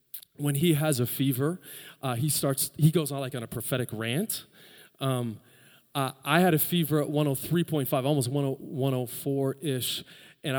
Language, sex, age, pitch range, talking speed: English, male, 30-49, 125-150 Hz, 160 wpm